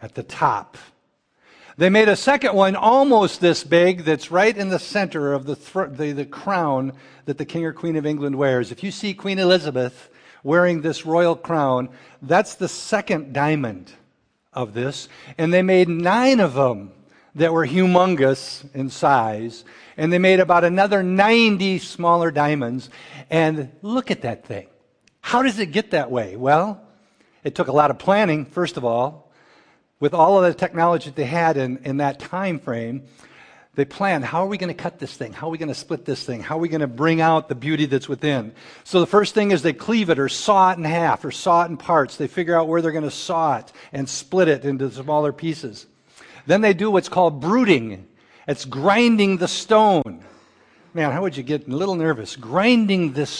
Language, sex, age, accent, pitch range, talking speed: English, male, 50-69, American, 140-185 Hz, 200 wpm